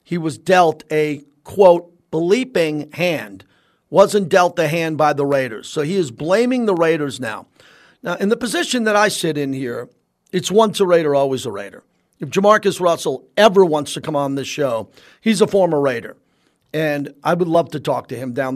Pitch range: 150-195 Hz